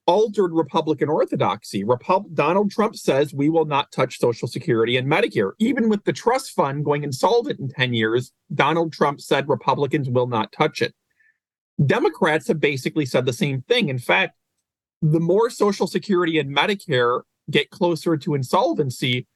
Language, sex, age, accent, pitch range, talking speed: English, male, 40-59, American, 140-190 Hz, 160 wpm